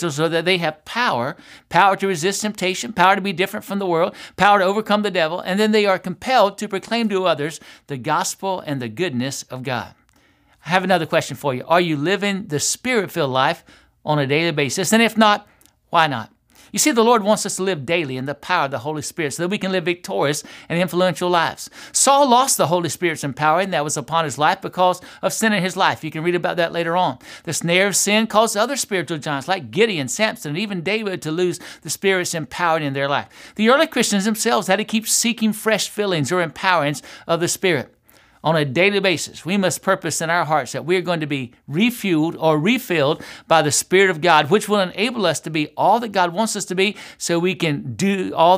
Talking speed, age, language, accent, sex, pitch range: 230 wpm, 60-79, English, American, male, 155-200 Hz